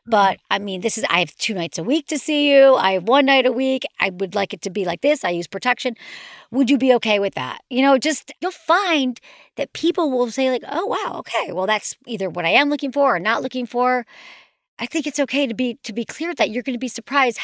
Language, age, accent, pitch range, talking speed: English, 40-59, American, 210-285 Hz, 265 wpm